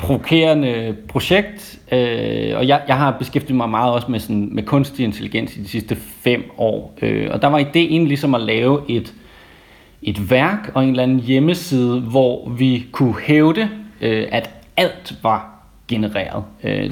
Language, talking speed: Danish, 170 wpm